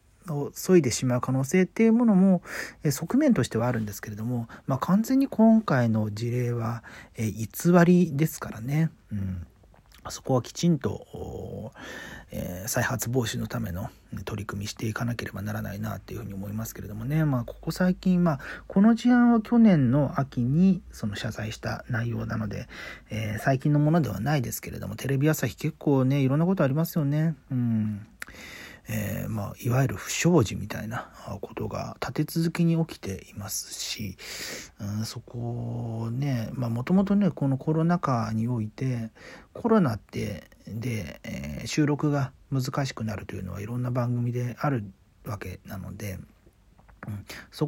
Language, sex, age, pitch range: Japanese, male, 40-59, 110-165 Hz